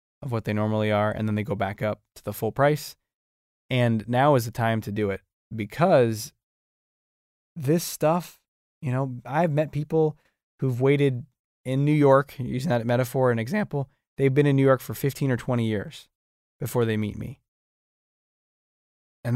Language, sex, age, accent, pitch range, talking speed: English, male, 20-39, American, 105-140 Hz, 175 wpm